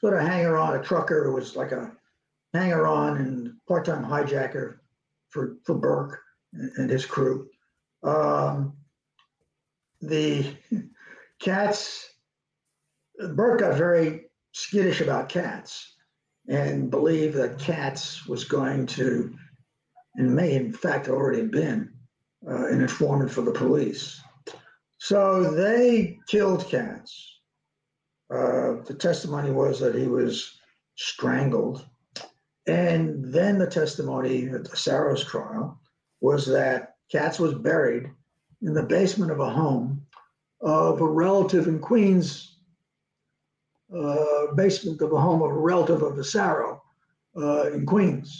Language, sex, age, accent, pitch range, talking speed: English, male, 50-69, American, 145-185 Hz, 125 wpm